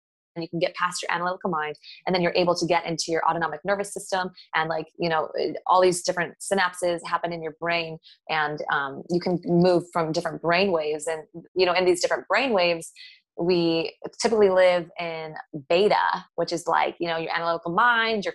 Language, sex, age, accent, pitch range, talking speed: English, female, 20-39, American, 165-190 Hz, 205 wpm